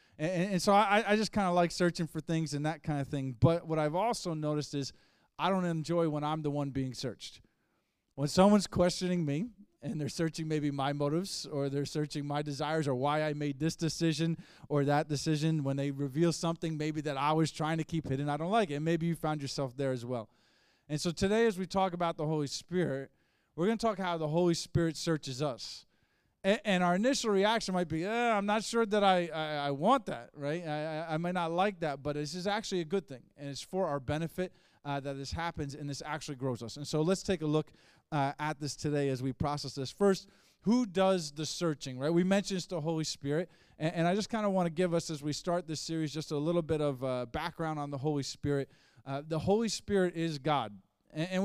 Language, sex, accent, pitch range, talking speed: English, male, American, 145-180 Hz, 235 wpm